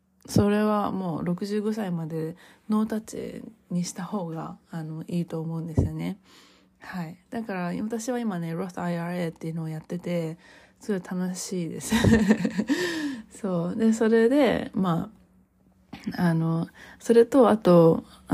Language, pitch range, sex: Japanese, 170-225 Hz, female